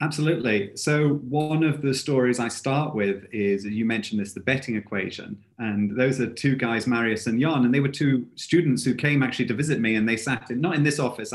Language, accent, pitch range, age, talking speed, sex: English, British, 110-145 Hz, 30-49, 225 wpm, male